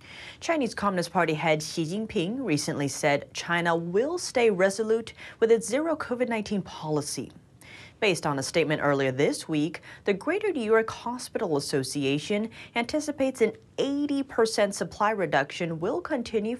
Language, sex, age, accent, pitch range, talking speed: English, female, 30-49, American, 155-235 Hz, 135 wpm